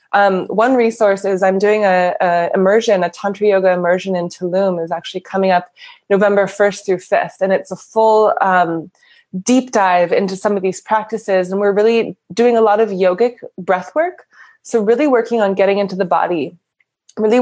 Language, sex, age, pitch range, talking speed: English, female, 20-39, 185-220 Hz, 185 wpm